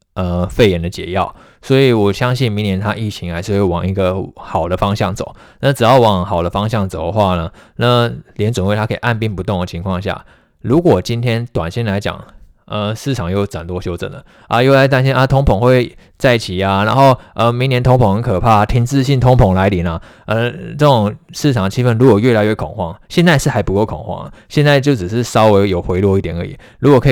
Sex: male